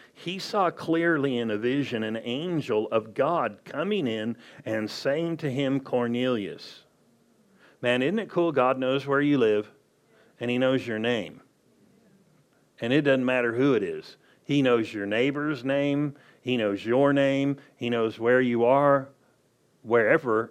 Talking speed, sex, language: 155 wpm, male, English